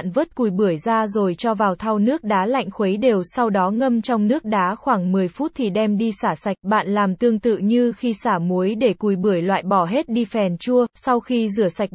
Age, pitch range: 20-39, 195-240 Hz